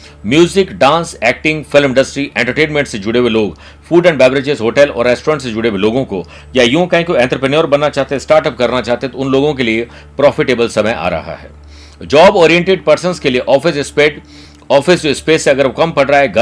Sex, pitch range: male, 110-155 Hz